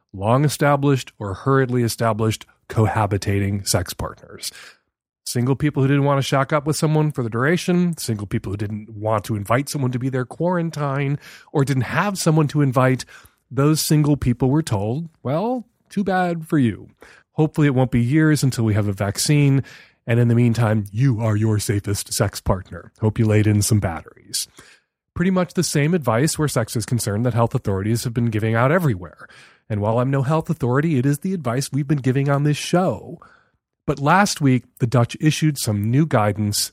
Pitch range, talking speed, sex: 115-150 Hz, 190 wpm, male